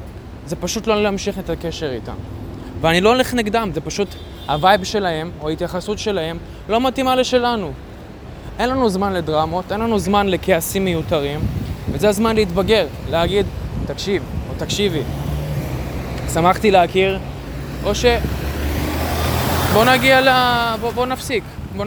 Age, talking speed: 20-39, 130 wpm